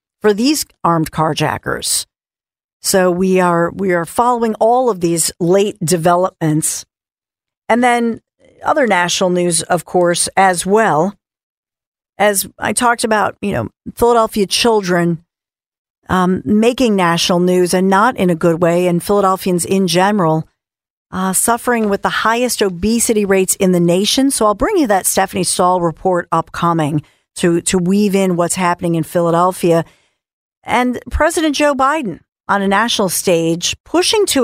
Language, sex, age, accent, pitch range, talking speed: English, female, 50-69, American, 175-220 Hz, 145 wpm